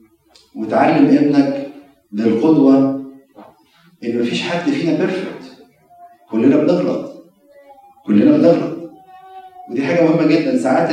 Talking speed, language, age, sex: 95 wpm, Arabic, 40-59, male